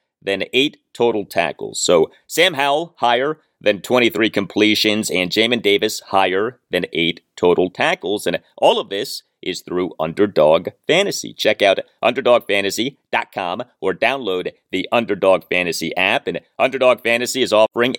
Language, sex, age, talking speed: English, male, 40-59, 135 wpm